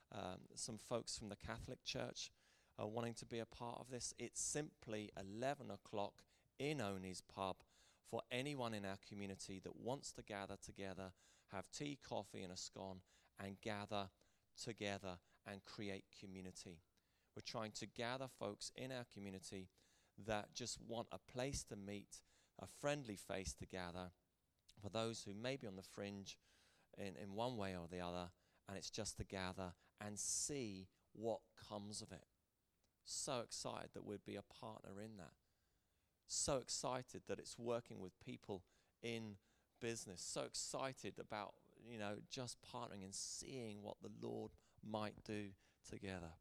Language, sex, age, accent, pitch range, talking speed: English, male, 20-39, British, 95-120 Hz, 160 wpm